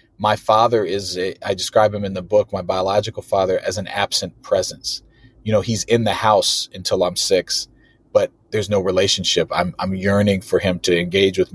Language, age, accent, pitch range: English, 30-49, American, 95-110 Hz